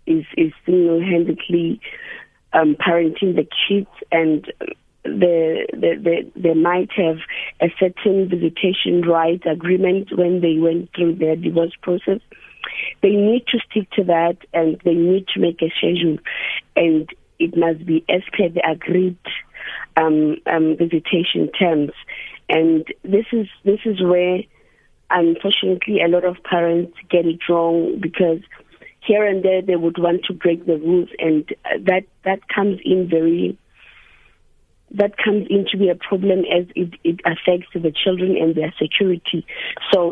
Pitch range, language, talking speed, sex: 165-195 Hz, English, 145 wpm, female